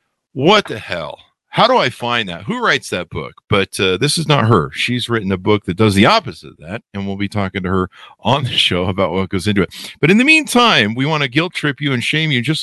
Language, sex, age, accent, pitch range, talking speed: English, male, 50-69, American, 95-155 Hz, 265 wpm